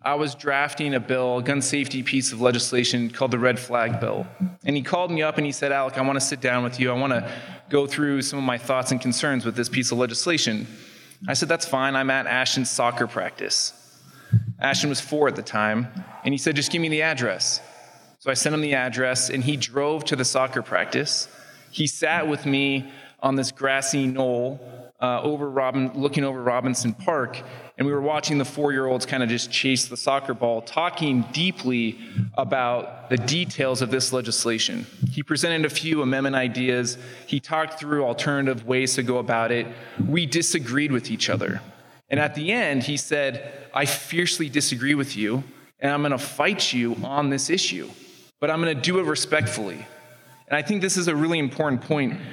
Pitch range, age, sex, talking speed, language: 125-150 Hz, 20-39, male, 200 wpm, English